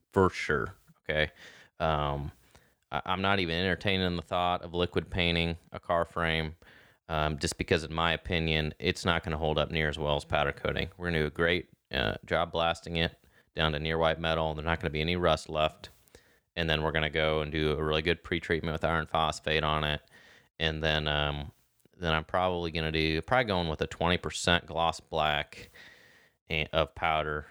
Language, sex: English, male